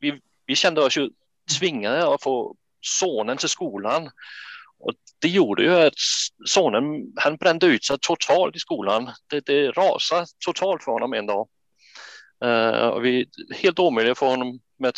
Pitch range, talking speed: 125-185 Hz, 160 wpm